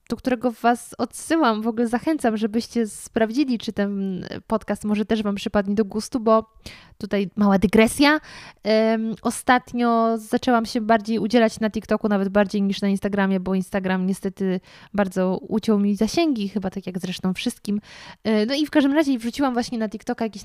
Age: 20-39